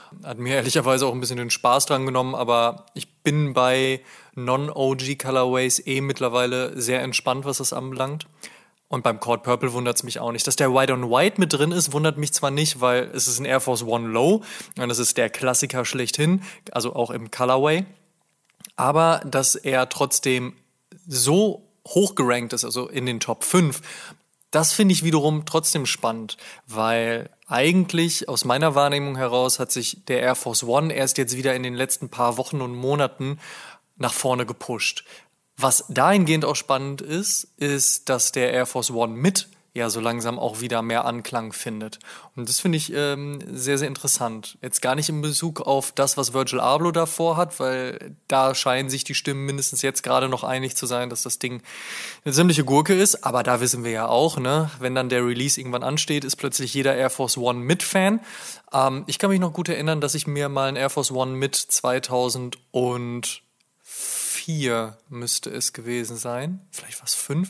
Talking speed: 190 wpm